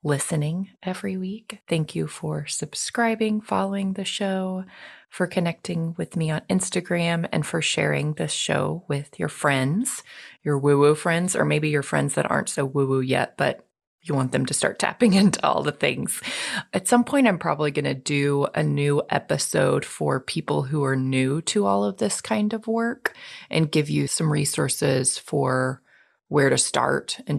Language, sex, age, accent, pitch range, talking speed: English, female, 30-49, American, 140-195 Hz, 175 wpm